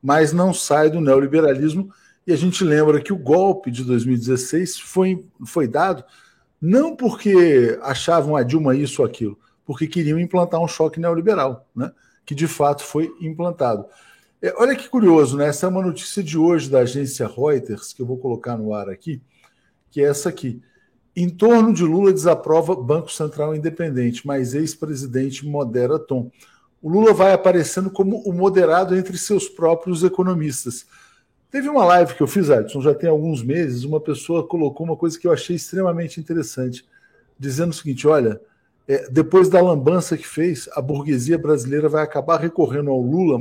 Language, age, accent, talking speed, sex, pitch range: Portuguese, 50-69, Brazilian, 170 wpm, male, 140-180 Hz